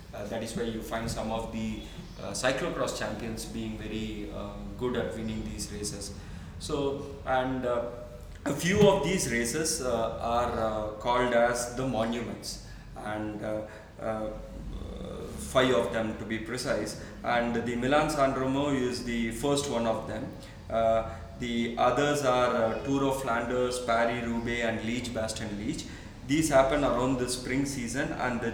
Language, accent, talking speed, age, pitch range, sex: English, Indian, 160 wpm, 20-39, 110-125 Hz, male